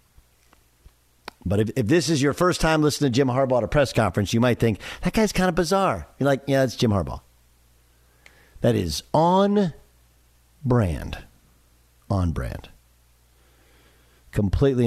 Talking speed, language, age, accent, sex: 150 wpm, English, 50-69, American, male